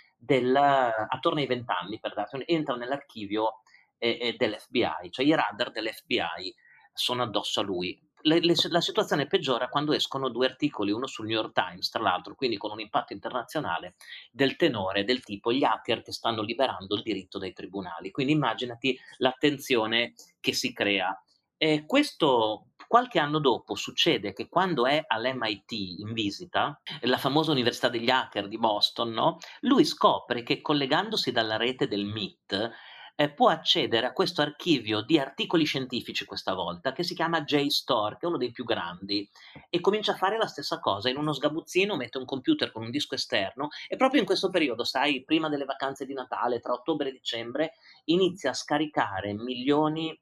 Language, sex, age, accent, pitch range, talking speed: Italian, male, 30-49, native, 115-160 Hz, 160 wpm